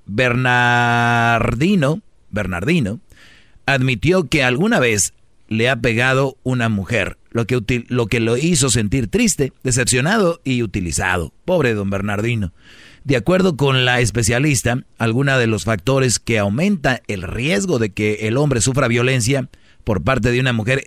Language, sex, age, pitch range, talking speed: Spanish, male, 40-59, 115-145 Hz, 140 wpm